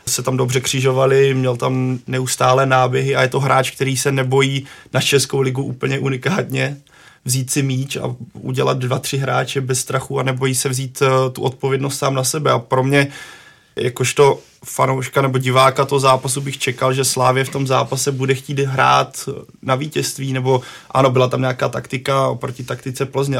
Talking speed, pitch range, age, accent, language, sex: 175 wpm, 130-135 Hz, 20-39, native, Czech, male